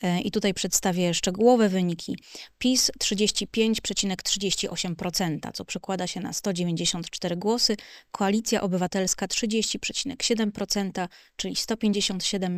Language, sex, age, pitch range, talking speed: Polish, female, 20-39, 180-215 Hz, 85 wpm